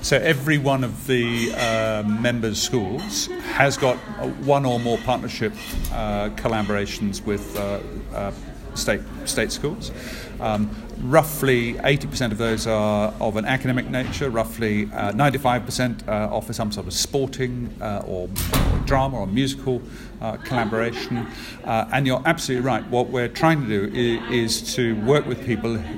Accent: British